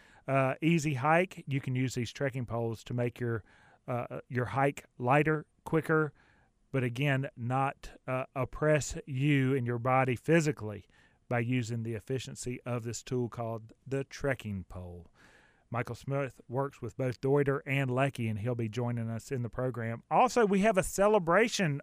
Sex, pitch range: male, 125-165 Hz